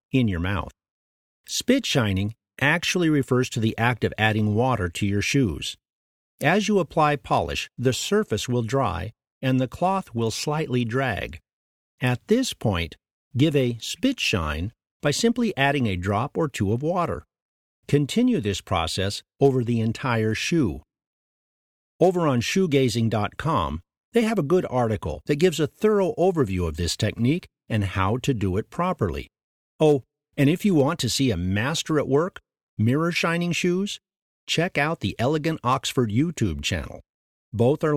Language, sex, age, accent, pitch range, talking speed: English, male, 50-69, American, 100-160 Hz, 155 wpm